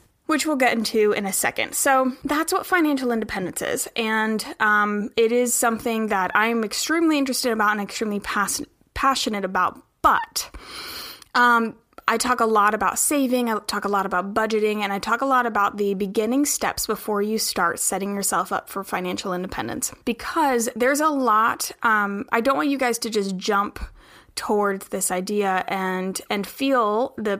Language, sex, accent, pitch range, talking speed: English, female, American, 200-250 Hz, 175 wpm